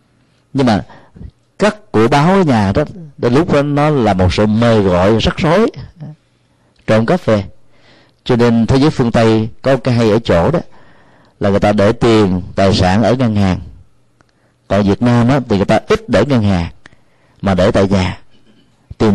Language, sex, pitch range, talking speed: Vietnamese, male, 100-130 Hz, 185 wpm